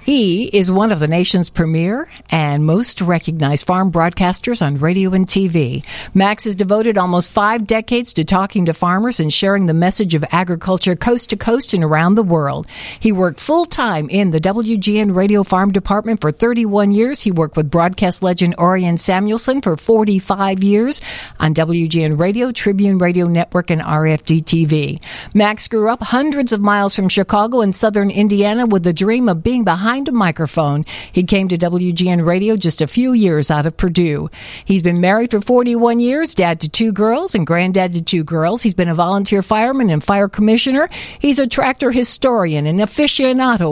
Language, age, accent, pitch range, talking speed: English, 60-79, American, 175-230 Hz, 180 wpm